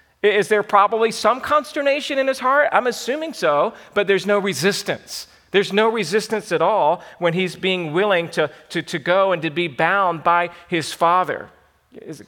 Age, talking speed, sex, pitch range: 40-59, 175 wpm, male, 170-225 Hz